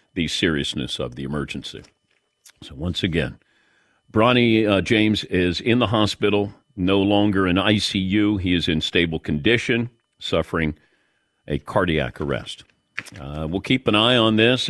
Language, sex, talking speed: English, male, 145 wpm